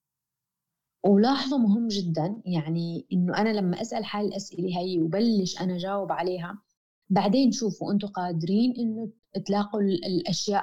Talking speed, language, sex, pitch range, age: 125 wpm, Arabic, female, 180-220 Hz, 20-39